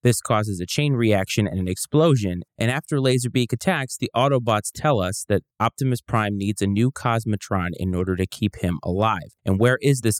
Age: 30-49